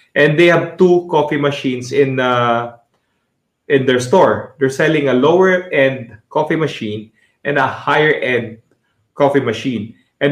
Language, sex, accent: English, male, Filipino